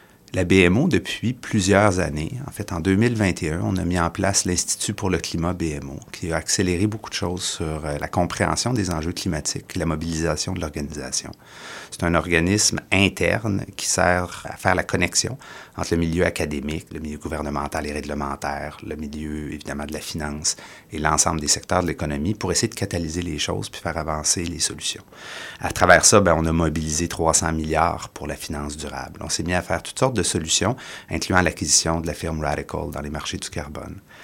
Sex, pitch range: male, 80-100 Hz